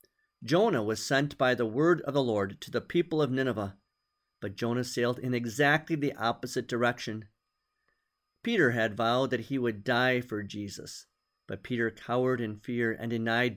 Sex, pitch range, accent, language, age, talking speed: male, 110-140 Hz, American, English, 50-69, 170 wpm